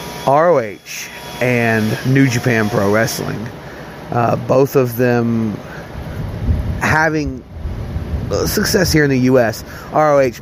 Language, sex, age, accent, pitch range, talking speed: English, male, 30-49, American, 115-135 Hz, 100 wpm